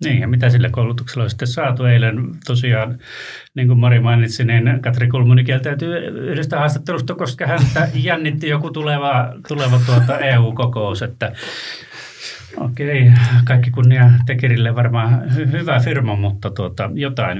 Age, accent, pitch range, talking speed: 30-49, native, 115-135 Hz, 140 wpm